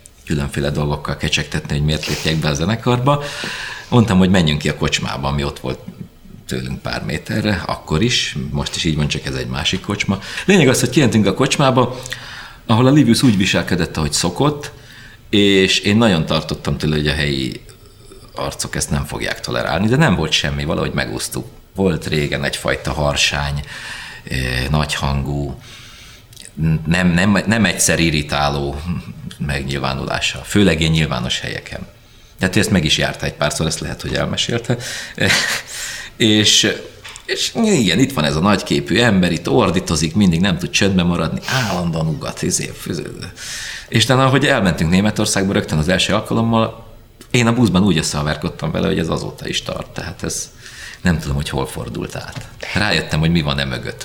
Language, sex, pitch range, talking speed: Hungarian, male, 75-115 Hz, 160 wpm